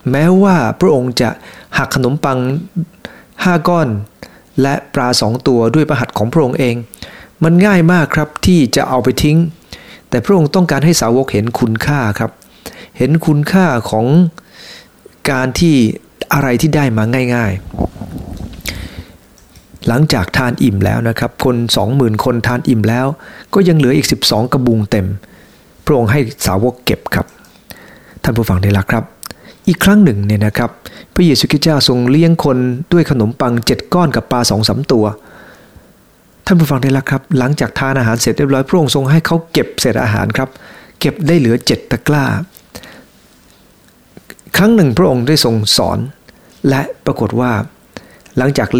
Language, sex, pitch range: English, male, 115-155 Hz